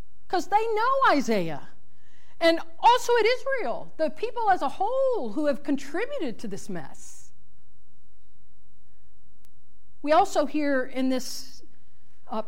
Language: English